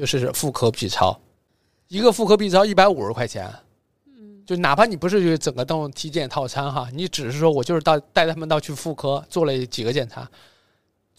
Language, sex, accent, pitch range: Chinese, male, native, 130-175 Hz